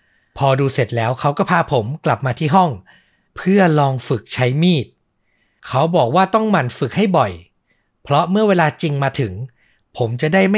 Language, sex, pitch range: Thai, male, 120-165 Hz